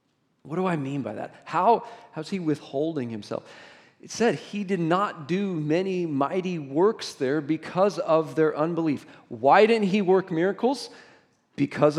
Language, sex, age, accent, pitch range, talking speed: English, male, 40-59, American, 135-185 Hz, 155 wpm